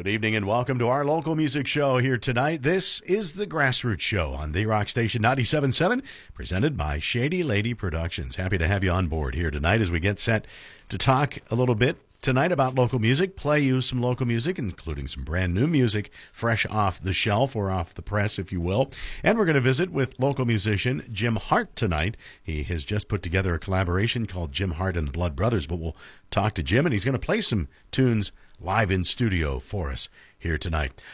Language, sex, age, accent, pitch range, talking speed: English, male, 50-69, American, 85-130 Hz, 215 wpm